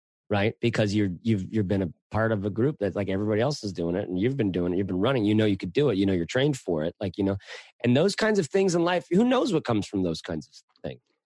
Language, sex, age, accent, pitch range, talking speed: English, male, 30-49, American, 110-150 Hz, 305 wpm